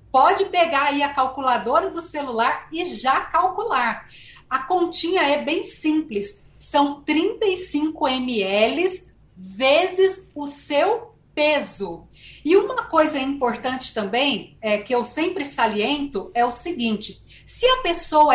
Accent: Brazilian